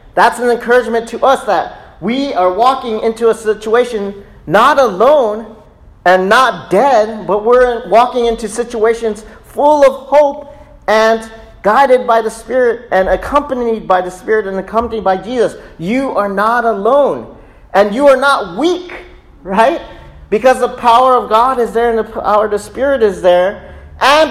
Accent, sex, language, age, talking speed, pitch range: American, male, English, 40-59, 160 wpm, 150-230 Hz